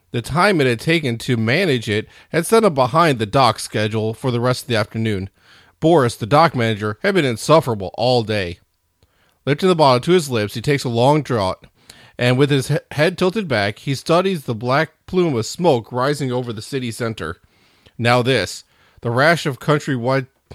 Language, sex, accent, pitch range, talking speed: English, male, American, 110-150 Hz, 190 wpm